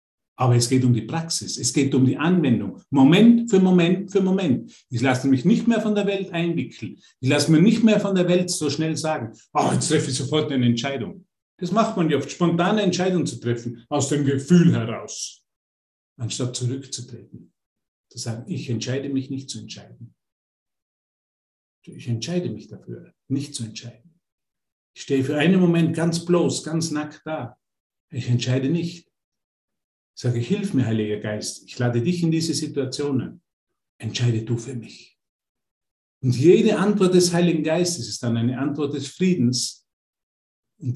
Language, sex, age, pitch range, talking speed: German, male, 50-69, 120-165 Hz, 165 wpm